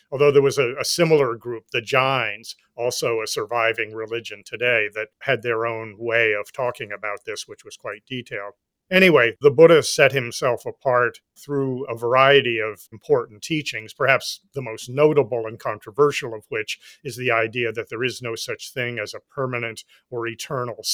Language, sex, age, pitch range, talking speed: English, male, 40-59, 115-140 Hz, 175 wpm